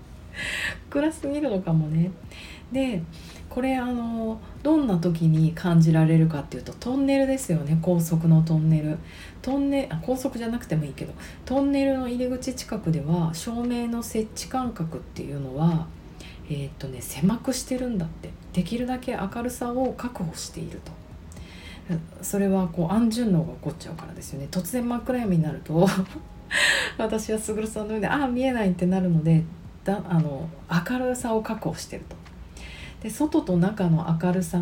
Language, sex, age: Japanese, female, 40-59